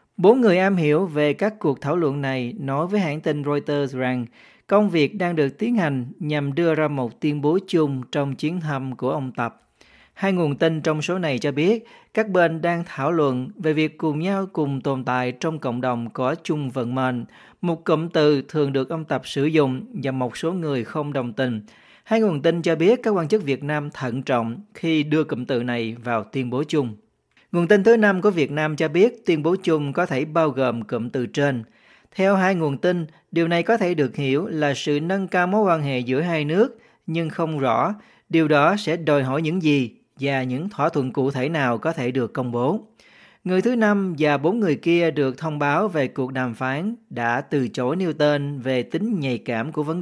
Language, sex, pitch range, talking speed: Vietnamese, male, 130-170 Hz, 220 wpm